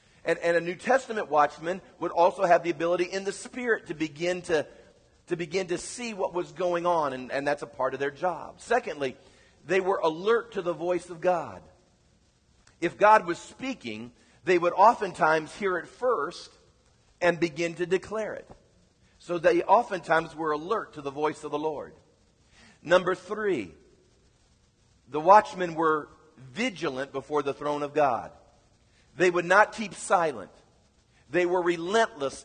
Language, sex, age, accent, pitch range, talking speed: English, female, 20-39, American, 160-215 Hz, 155 wpm